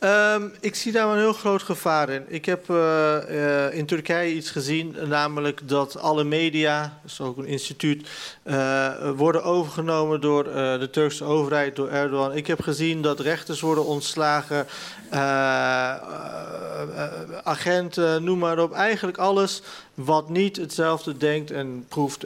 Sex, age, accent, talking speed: male, 40-59, Dutch, 160 wpm